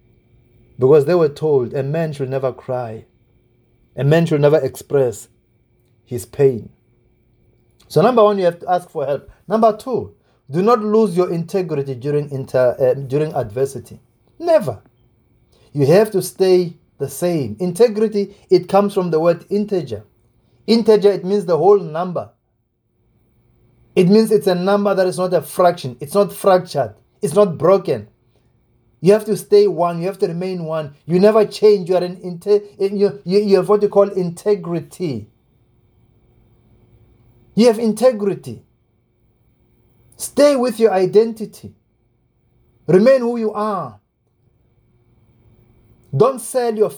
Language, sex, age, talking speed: English, male, 30-49, 135 wpm